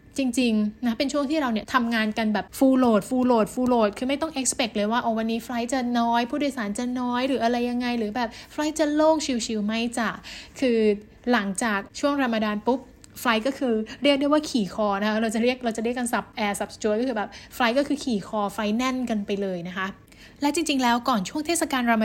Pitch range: 220-275 Hz